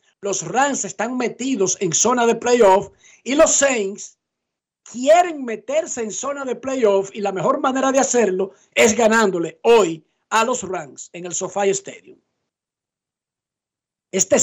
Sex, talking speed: male, 140 wpm